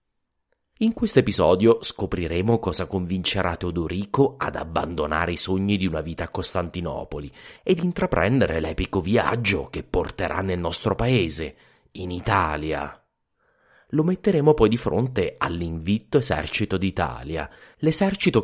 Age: 30-49